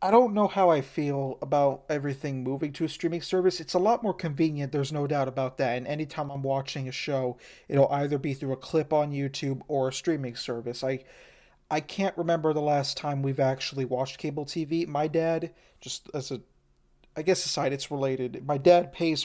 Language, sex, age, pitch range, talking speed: English, male, 40-59, 130-160 Hz, 205 wpm